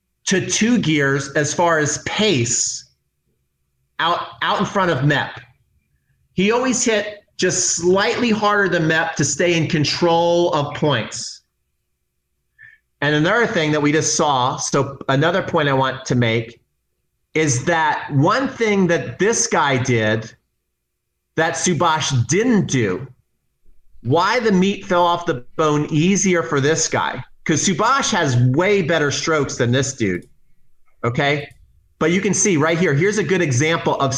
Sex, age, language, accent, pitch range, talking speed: male, 40-59, English, American, 130-180 Hz, 150 wpm